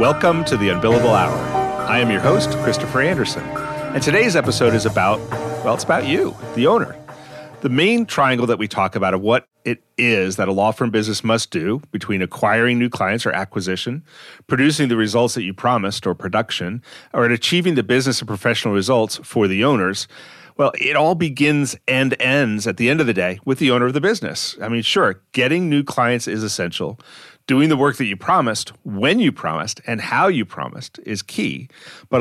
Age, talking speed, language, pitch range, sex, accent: 40-59, 200 wpm, English, 110-140 Hz, male, American